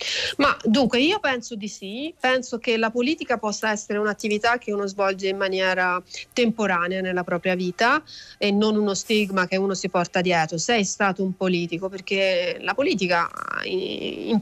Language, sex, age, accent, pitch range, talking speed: Italian, female, 30-49, native, 190-230 Hz, 165 wpm